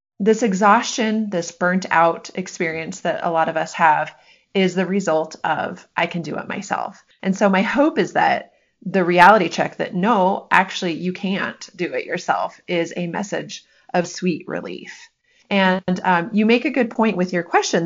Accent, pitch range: American, 165-205 Hz